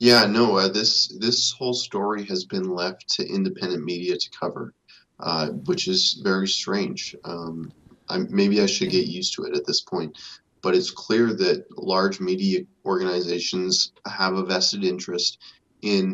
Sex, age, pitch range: male, 20-39, 95-120 Hz